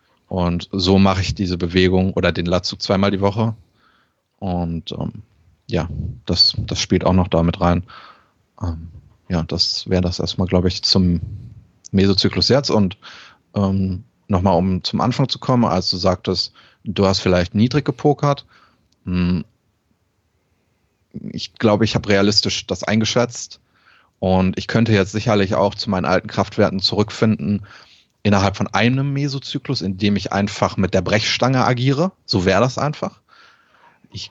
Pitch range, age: 95-115 Hz, 30-49